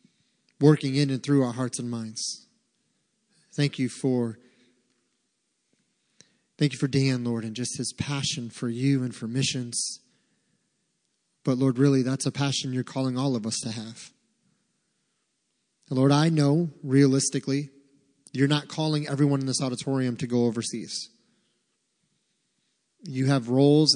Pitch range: 120-150 Hz